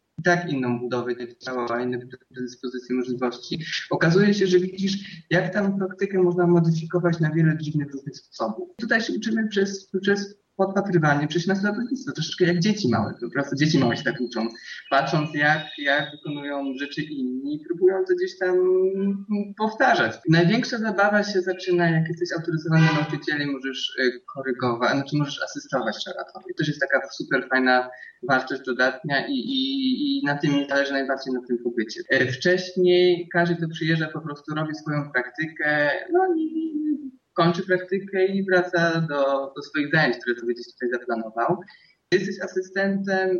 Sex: male